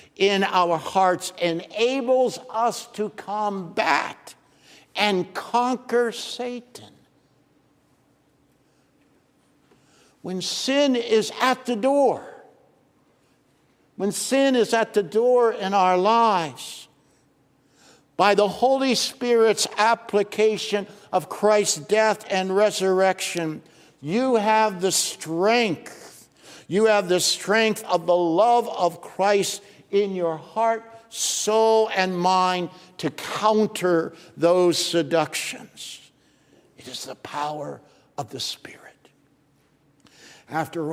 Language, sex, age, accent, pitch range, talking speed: English, male, 60-79, American, 155-215 Hz, 95 wpm